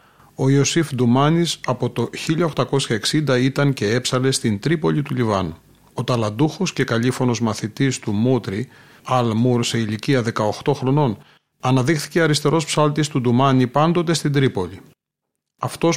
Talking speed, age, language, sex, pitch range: 130 wpm, 40-59, Greek, male, 115-145 Hz